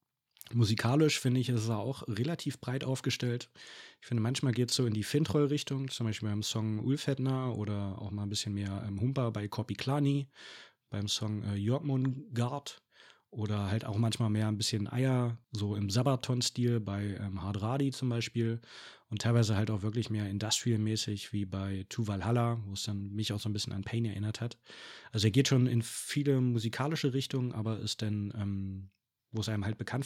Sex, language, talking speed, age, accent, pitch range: male, German, 185 wpm, 30-49, German, 105-120 Hz